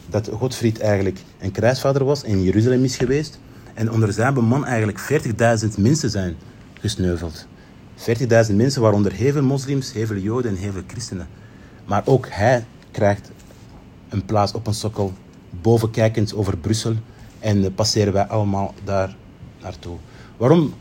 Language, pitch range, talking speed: Dutch, 100-125 Hz, 145 wpm